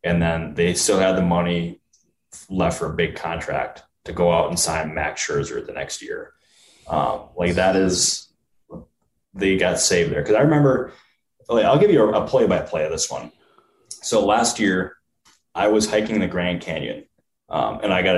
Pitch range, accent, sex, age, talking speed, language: 85-100 Hz, American, male, 20-39, 190 wpm, English